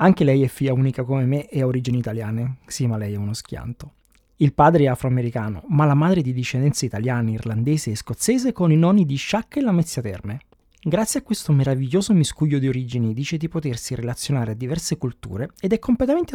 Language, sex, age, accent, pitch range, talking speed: Italian, male, 20-39, native, 120-160 Hz, 205 wpm